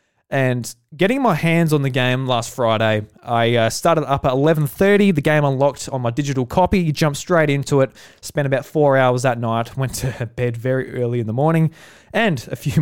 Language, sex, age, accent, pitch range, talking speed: English, male, 20-39, Australian, 120-165 Hz, 200 wpm